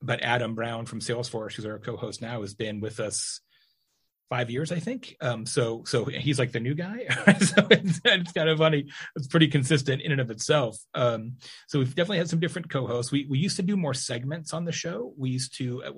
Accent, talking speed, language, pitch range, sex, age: American, 225 wpm, English, 115-145 Hz, male, 30-49